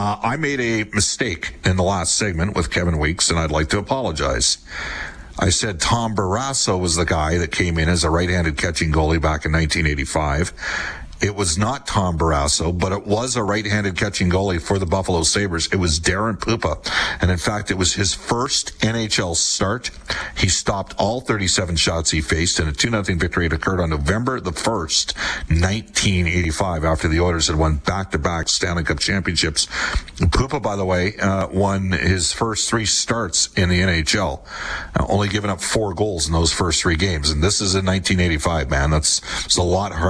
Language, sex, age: English, male, 50-69